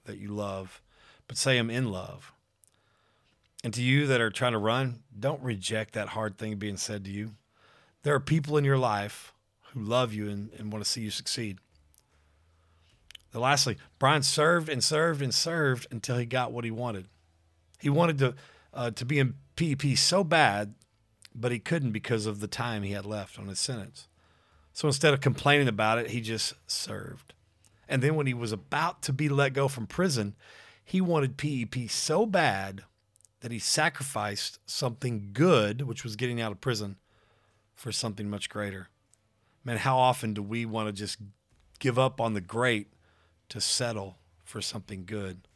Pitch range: 105-130 Hz